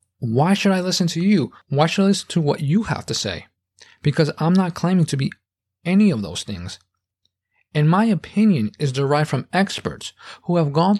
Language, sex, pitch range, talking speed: English, male, 130-185 Hz, 195 wpm